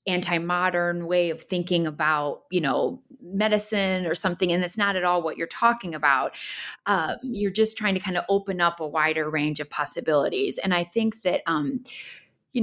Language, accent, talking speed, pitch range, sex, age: English, American, 185 wpm, 165-210 Hz, female, 30-49